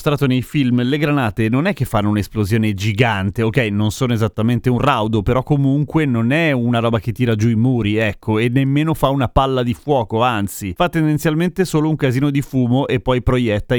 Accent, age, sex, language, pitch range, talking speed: native, 30-49, male, Italian, 110-155 Hz, 200 wpm